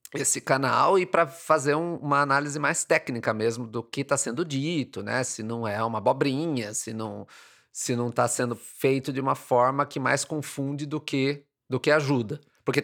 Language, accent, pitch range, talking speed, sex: English, Brazilian, 125-160 Hz, 190 wpm, male